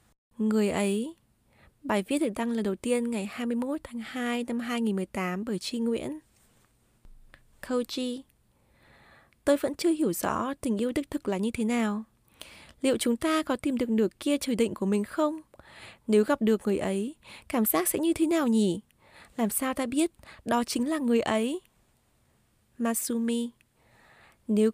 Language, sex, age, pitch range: Vietnamese, female, 20-39, 210-265 Hz